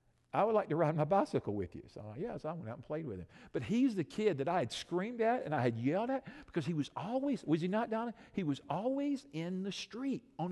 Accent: American